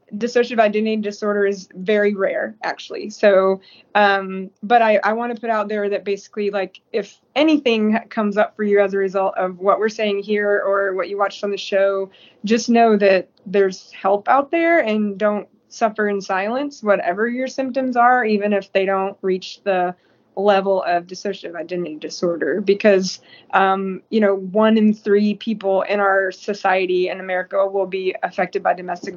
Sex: female